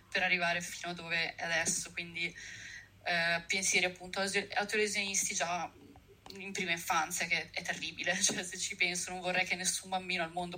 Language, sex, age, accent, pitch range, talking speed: Italian, female, 20-39, native, 180-220 Hz, 175 wpm